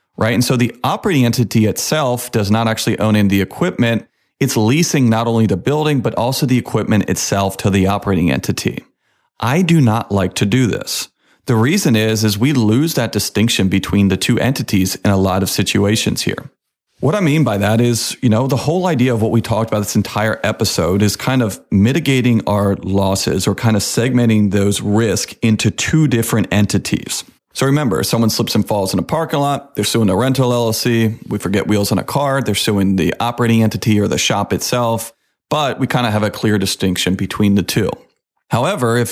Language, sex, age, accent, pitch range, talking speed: English, male, 40-59, American, 100-120 Hz, 205 wpm